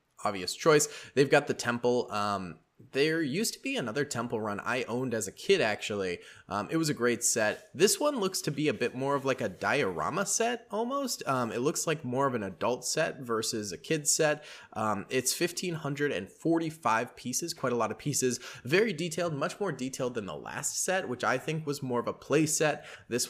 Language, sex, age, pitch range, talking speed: English, male, 20-39, 110-155 Hz, 210 wpm